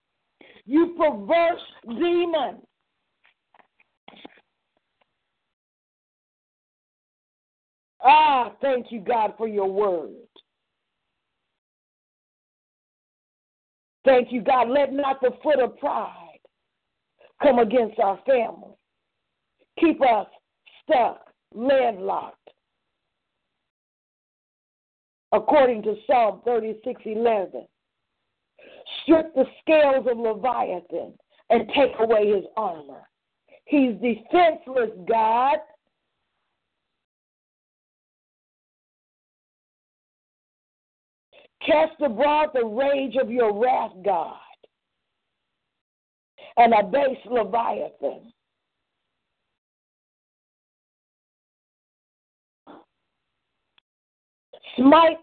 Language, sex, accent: English, female, American